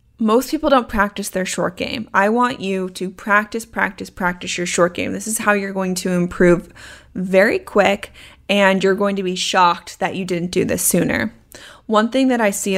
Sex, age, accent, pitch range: female, 10-29, American, 185-230 Hz